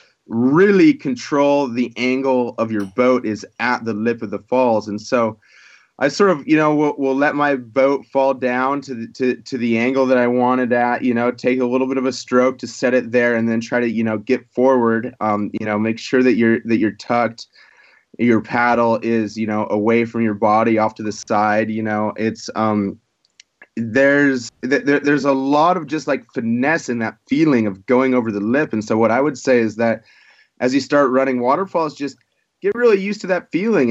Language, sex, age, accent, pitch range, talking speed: English, male, 30-49, American, 110-135 Hz, 215 wpm